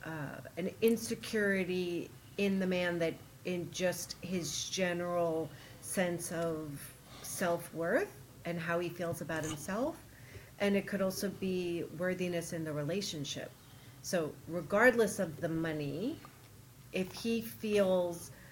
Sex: female